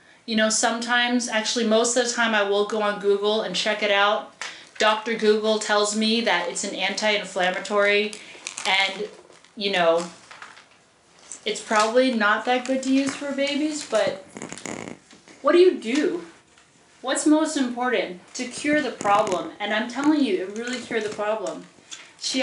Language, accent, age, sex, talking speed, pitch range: English, American, 30-49, female, 160 wpm, 190-235 Hz